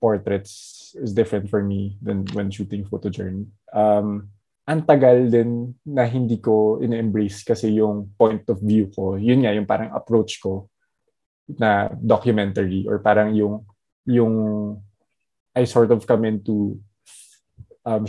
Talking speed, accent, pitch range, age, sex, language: 140 wpm, native, 105-125 Hz, 20-39, male, Filipino